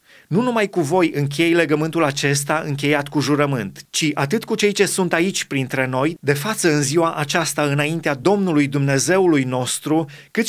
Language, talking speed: Romanian, 165 wpm